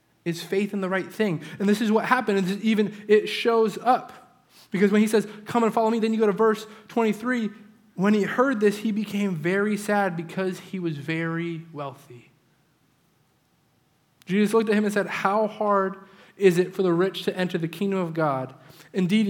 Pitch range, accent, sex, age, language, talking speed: 175-225 Hz, American, male, 20-39, English, 195 wpm